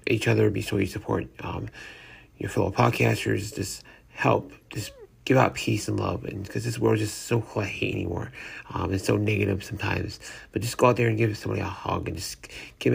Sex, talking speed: male, 220 wpm